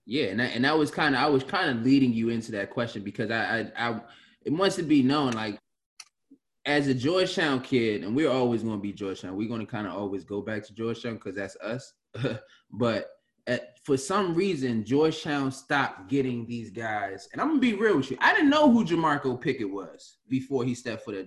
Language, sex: English, male